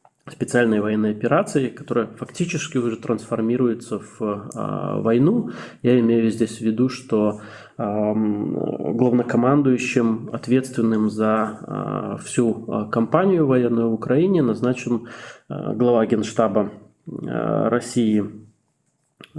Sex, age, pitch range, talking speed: male, 20-39, 115-135 Hz, 85 wpm